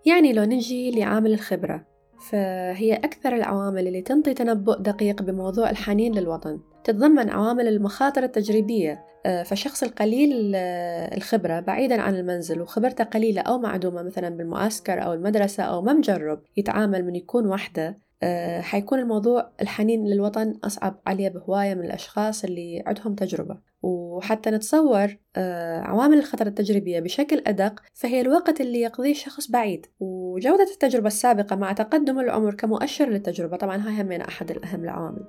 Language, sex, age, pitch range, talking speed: Arabic, female, 20-39, 190-245 Hz, 135 wpm